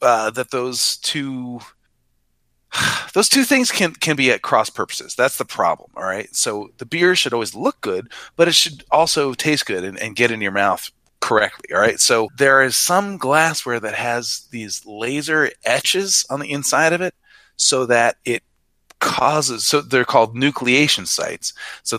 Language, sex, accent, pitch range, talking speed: English, male, American, 105-140 Hz, 185 wpm